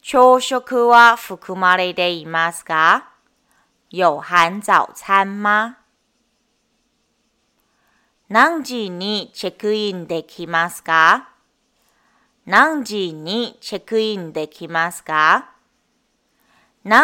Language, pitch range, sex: Japanese, 175-225 Hz, female